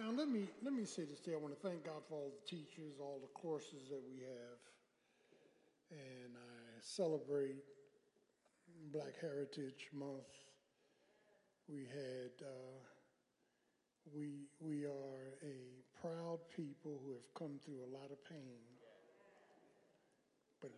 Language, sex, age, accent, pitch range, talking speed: English, male, 50-69, American, 125-150 Hz, 135 wpm